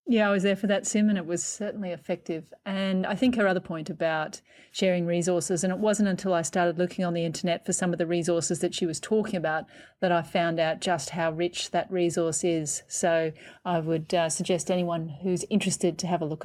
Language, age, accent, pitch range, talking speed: English, 30-49, Australian, 170-200 Hz, 230 wpm